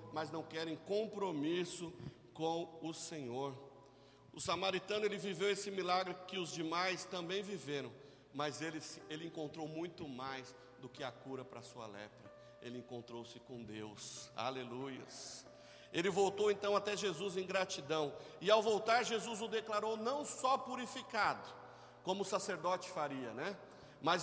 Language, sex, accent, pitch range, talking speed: Portuguese, male, Brazilian, 140-200 Hz, 145 wpm